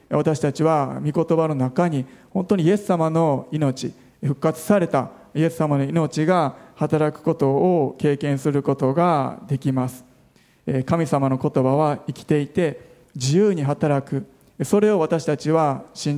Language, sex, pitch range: Japanese, male, 135-175 Hz